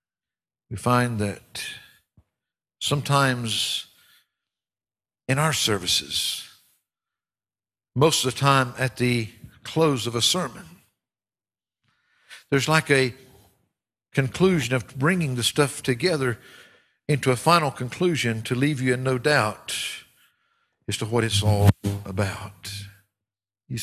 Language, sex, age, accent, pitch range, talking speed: English, male, 60-79, American, 105-145 Hz, 110 wpm